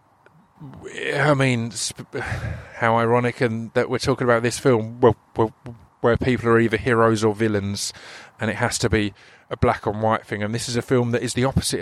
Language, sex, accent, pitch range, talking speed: English, male, British, 110-130 Hz, 195 wpm